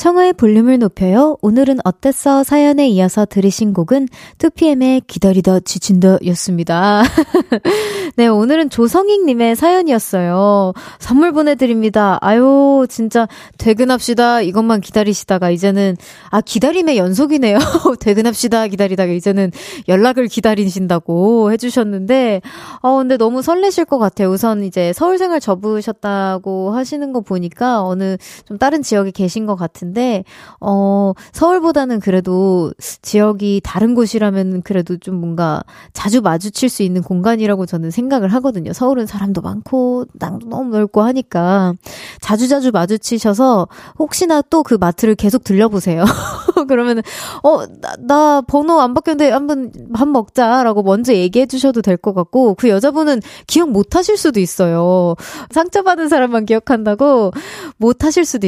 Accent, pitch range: native, 195-270 Hz